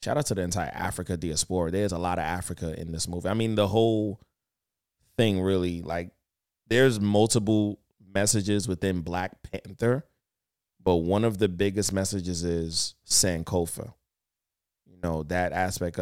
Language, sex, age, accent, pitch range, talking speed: English, male, 20-39, American, 85-105 Hz, 150 wpm